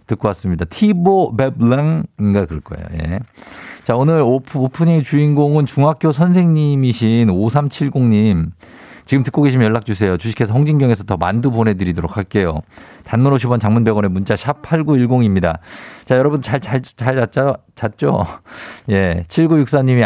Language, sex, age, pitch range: Korean, male, 50-69, 105-140 Hz